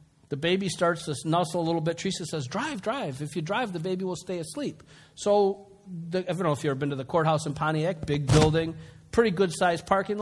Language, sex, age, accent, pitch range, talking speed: English, male, 50-69, American, 145-185 Hz, 230 wpm